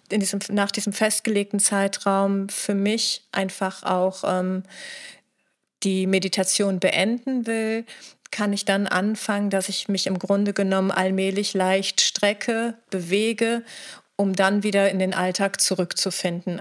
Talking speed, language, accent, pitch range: 130 wpm, German, German, 190-210 Hz